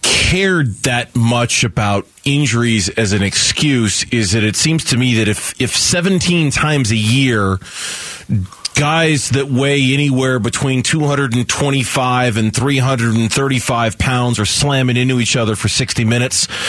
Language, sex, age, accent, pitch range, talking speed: English, male, 30-49, American, 115-175 Hz, 135 wpm